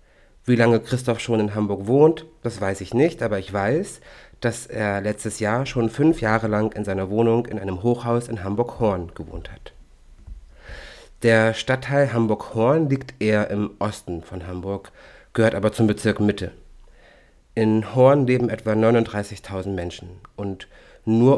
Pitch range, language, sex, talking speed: 95-120 Hz, German, male, 150 wpm